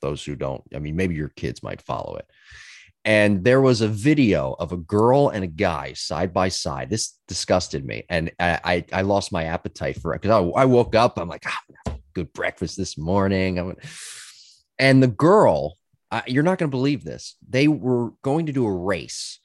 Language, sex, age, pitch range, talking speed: English, male, 30-49, 90-130 Hz, 195 wpm